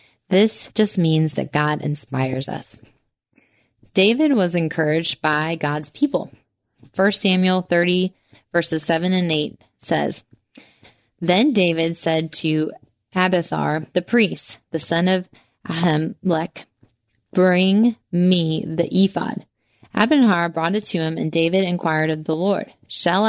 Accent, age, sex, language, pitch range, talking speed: American, 20-39, female, English, 155-195 Hz, 125 wpm